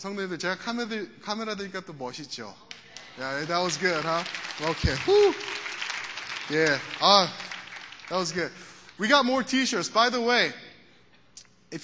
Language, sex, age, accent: Korean, male, 20-39, native